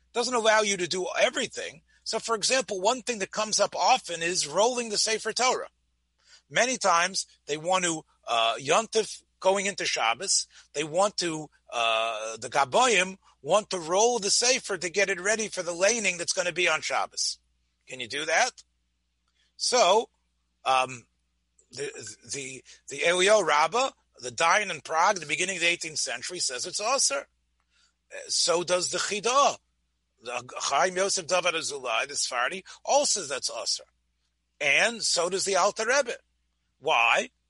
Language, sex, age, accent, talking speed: English, male, 40-59, American, 150 wpm